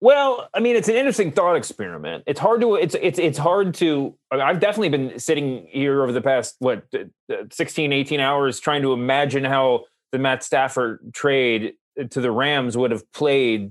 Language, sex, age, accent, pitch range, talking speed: English, male, 30-49, American, 135-195 Hz, 195 wpm